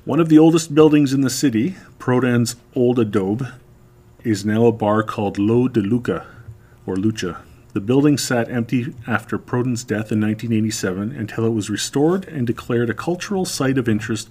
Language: English